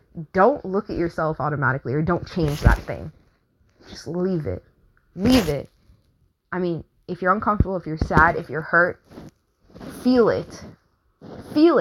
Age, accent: 20-39, American